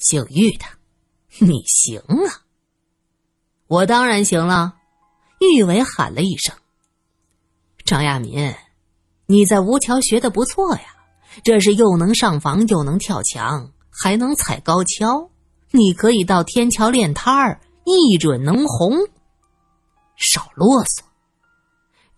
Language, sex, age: Chinese, female, 20-39